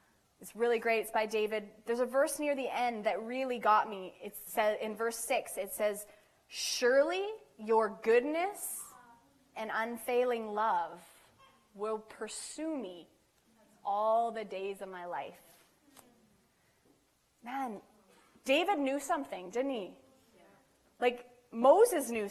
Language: English